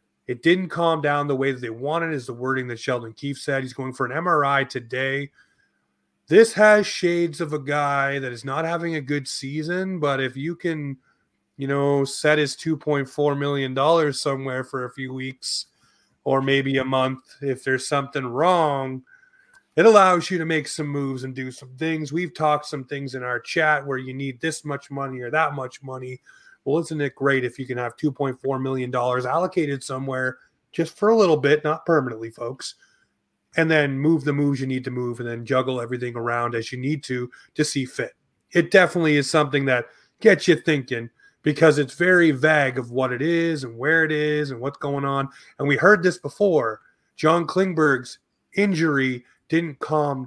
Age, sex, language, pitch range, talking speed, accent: 30-49, male, English, 130-160 Hz, 190 wpm, American